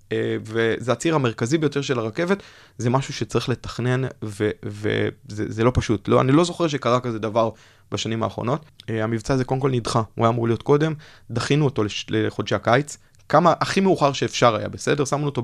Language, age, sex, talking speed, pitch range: Hebrew, 20-39, male, 175 wpm, 110-140 Hz